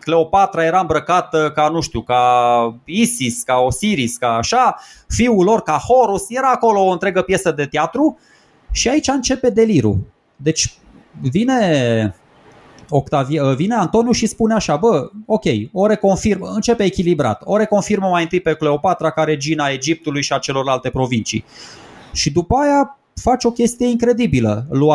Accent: native